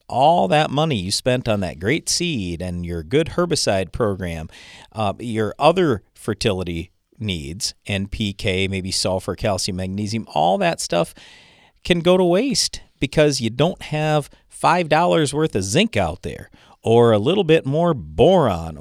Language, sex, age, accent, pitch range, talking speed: English, male, 40-59, American, 95-145 Hz, 150 wpm